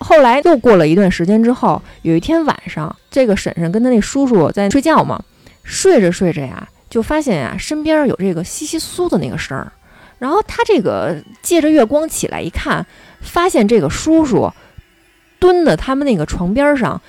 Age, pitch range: 20-39, 195-315 Hz